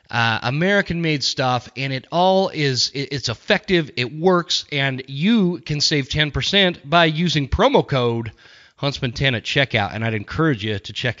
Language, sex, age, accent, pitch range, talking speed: English, male, 30-49, American, 120-165 Hz, 165 wpm